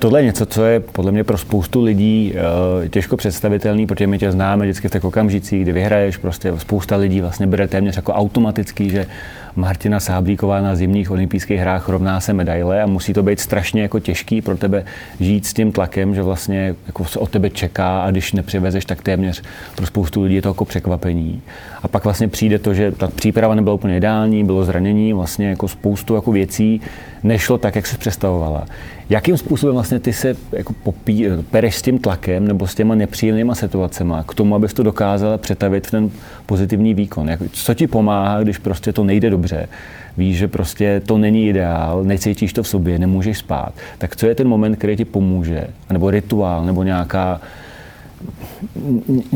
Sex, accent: male, native